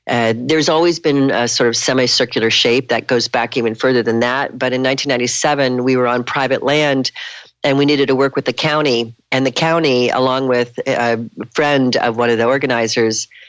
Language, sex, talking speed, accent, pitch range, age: English, female, 195 wpm, American, 120-150 Hz, 40-59